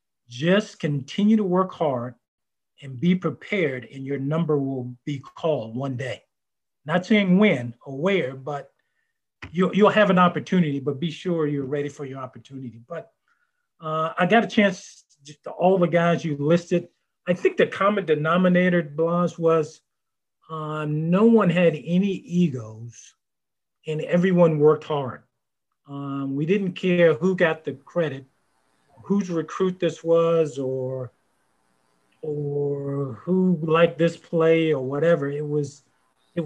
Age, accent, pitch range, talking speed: 50-69, American, 140-175 Hz, 145 wpm